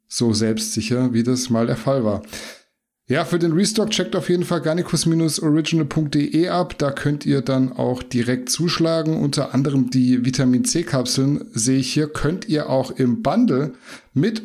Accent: German